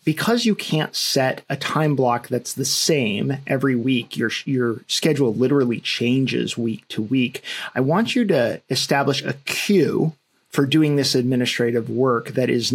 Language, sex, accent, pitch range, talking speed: English, male, American, 125-145 Hz, 160 wpm